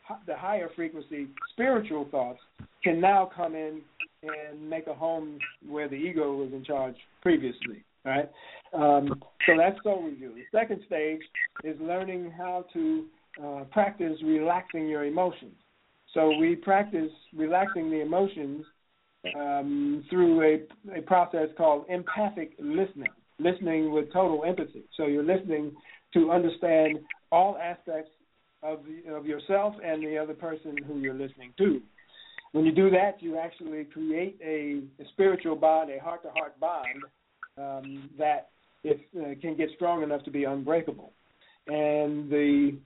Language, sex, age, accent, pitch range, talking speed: English, male, 50-69, American, 145-180 Hz, 145 wpm